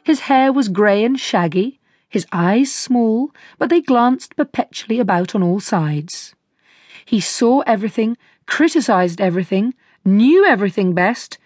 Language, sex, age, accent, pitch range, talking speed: English, female, 40-59, British, 185-255 Hz, 130 wpm